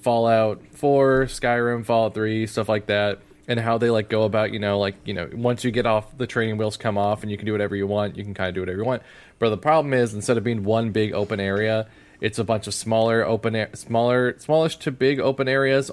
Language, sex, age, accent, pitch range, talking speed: English, male, 20-39, American, 105-125 Hz, 250 wpm